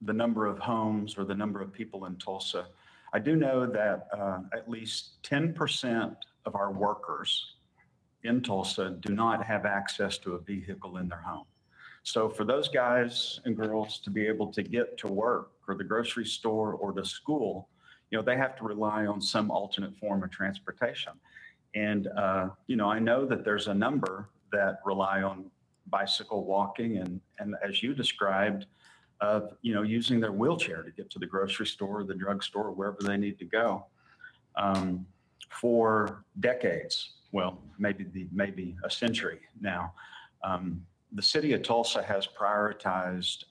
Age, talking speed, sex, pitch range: 50-69, 165 wpm, male, 95-110 Hz